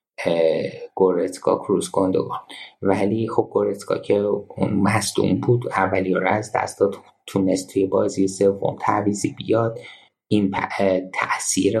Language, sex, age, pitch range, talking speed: Persian, male, 30-49, 95-115 Hz, 100 wpm